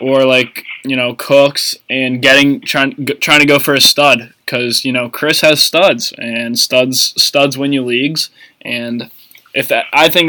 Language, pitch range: English, 125-150 Hz